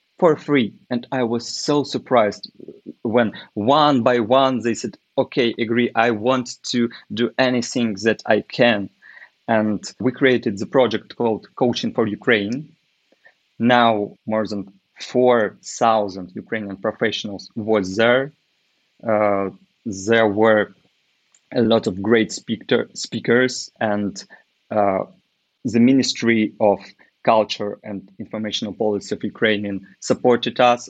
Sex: male